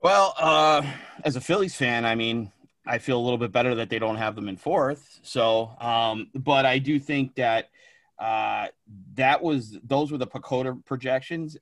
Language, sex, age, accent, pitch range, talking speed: English, male, 30-49, American, 110-130 Hz, 185 wpm